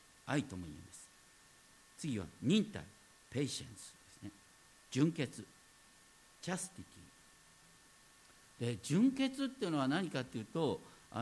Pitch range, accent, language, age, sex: 120-200 Hz, native, Japanese, 50-69, male